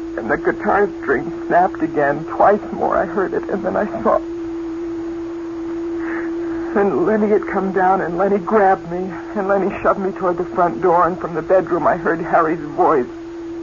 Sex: female